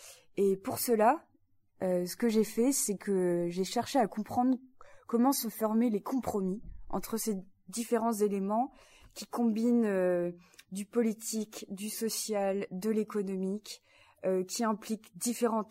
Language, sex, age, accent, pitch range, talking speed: French, female, 20-39, French, 190-230 Hz, 135 wpm